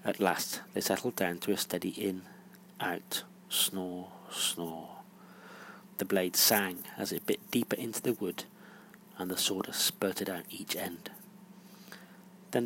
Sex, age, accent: male, 40-59, British